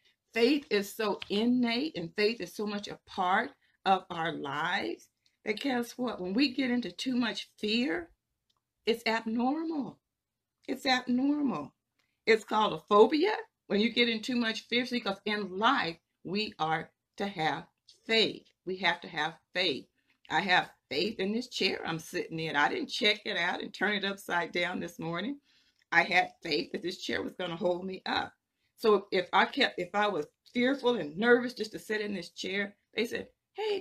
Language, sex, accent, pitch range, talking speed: English, female, American, 180-245 Hz, 185 wpm